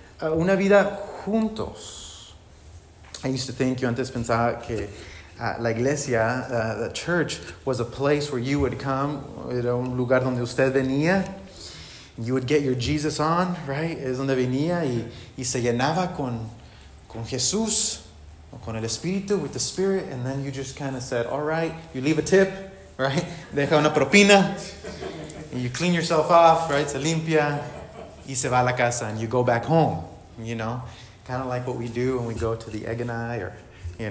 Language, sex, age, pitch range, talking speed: English, male, 30-49, 115-150 Hz, 190 wpm